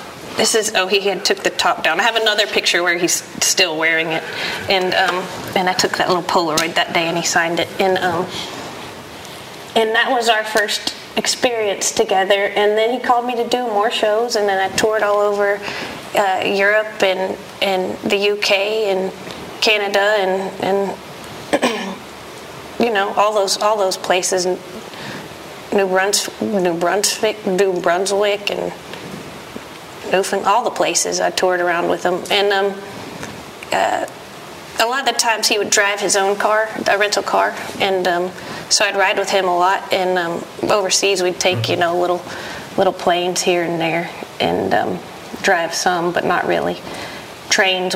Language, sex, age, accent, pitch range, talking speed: English, female, 30-49, American, 180-210 Hz, 170 wpm